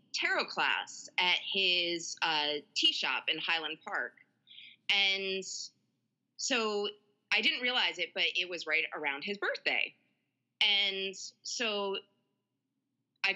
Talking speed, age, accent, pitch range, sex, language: 115 wpm, 20-39, American, 160-215 Hz, female, English